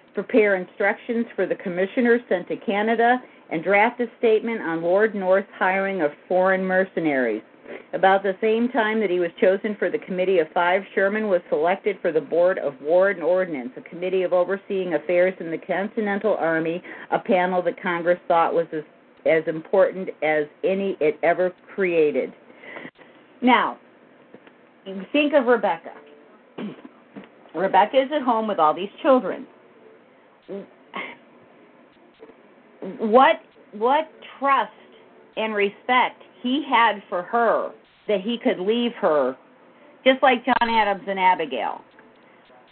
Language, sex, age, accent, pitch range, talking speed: English, female, 50-69, American, 185-235 Hz, 140 wpm